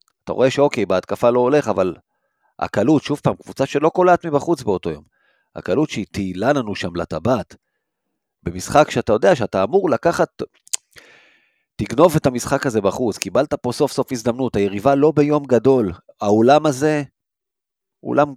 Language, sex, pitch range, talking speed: Hebrew, male, 110-145 Hz, 145 wpm